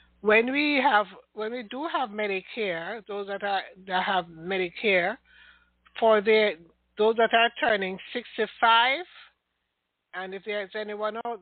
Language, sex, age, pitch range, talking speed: English, male, 60-79, 185-225 Hz, 135 wpm